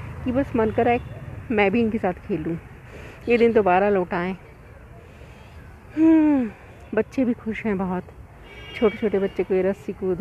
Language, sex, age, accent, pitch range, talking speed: Hindi, female, 40-59, native, 165-250 Hz, 155 wpm